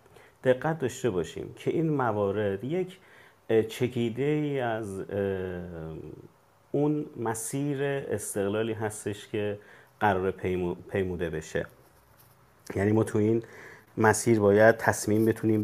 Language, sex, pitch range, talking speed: Persian, male, 100-120 Hz, 105 wpm